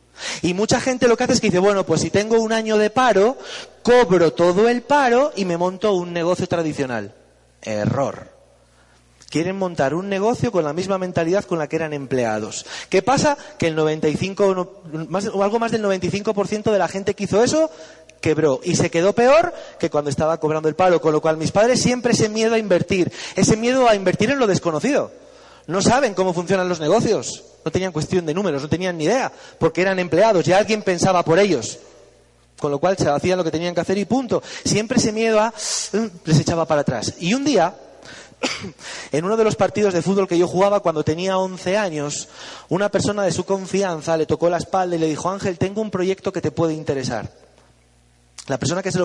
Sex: male